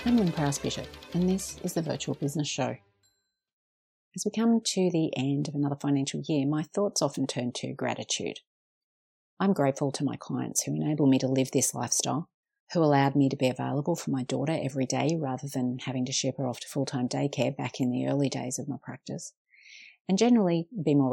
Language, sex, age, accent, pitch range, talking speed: English, female, 40-59, Australian, 130-155 Hz, 205 wpm